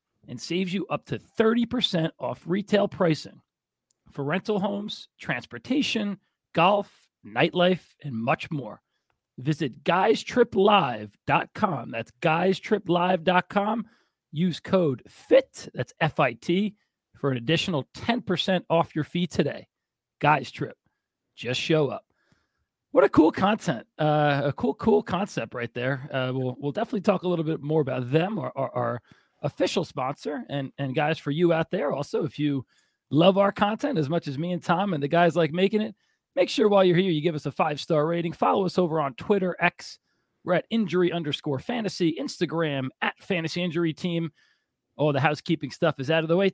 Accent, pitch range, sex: American, 145-195 Hz, male